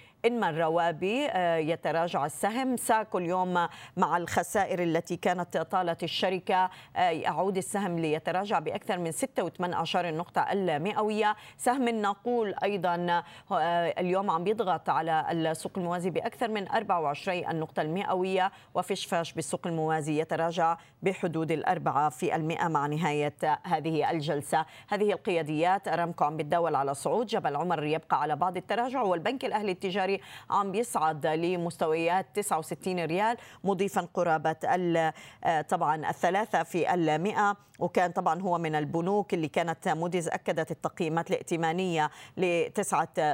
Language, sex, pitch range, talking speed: Arabic, female, 160-190 Hz, 125 wpm